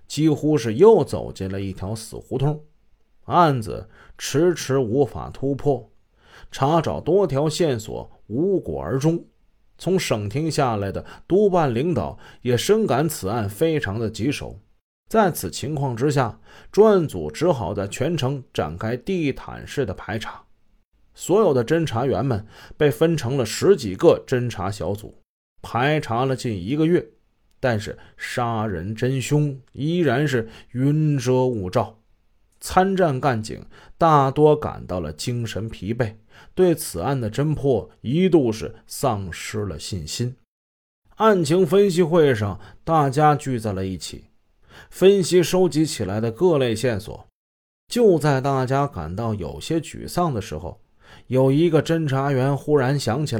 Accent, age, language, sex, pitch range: native, 30-49, Chinese, male, 110-150 Hz